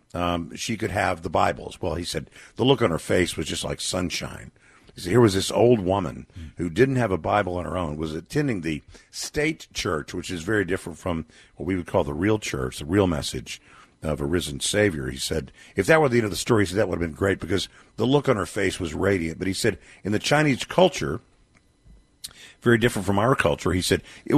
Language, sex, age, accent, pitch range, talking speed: English, male, 50-69, American, 90-115 Hz, 240 wpm